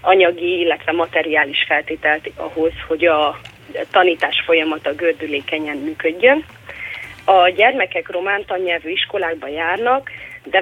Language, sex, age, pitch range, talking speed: Hungarian, female, 30-49, 160-250 Hz, 95 wpm